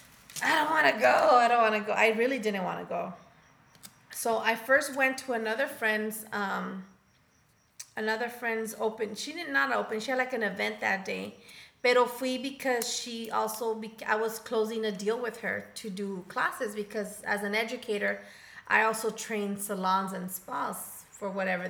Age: 30-49